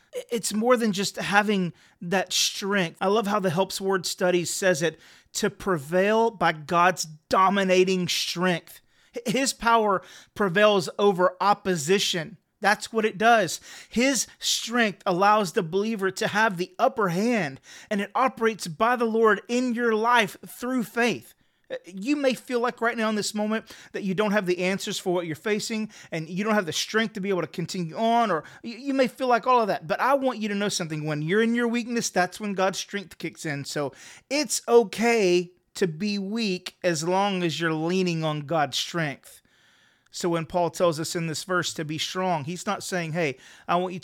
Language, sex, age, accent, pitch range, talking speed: English, male, 30-49, American, 175-225 Hz, 190 wpm